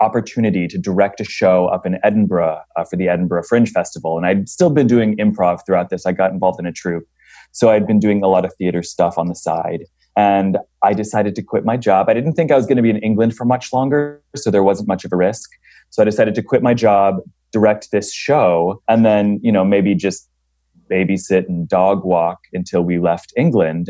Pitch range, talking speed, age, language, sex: 90-115 Hz, 230 wpm, 30-49, English, male